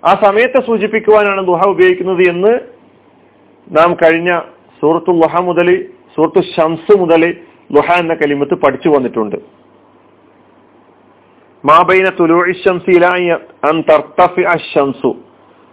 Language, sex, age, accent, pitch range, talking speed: Malayalam, male, 40-59, native, 170-230 Hz, 80 wpm